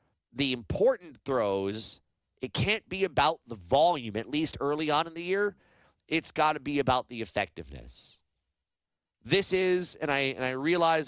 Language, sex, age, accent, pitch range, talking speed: English, male, 30-49, American, 120-160 Hz, 160 wpm